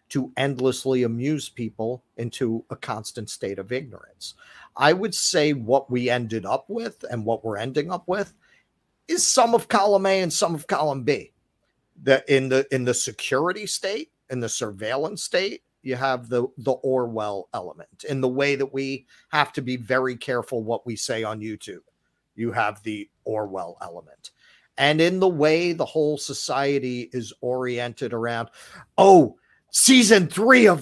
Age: 40-59